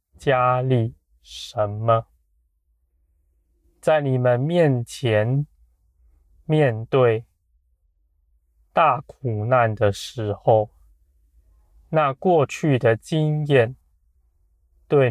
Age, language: 20-39, Chinese